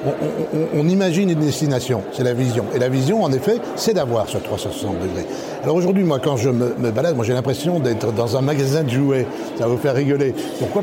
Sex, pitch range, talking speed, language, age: male, 135-170 Hz, 235 wpm, French, 60-79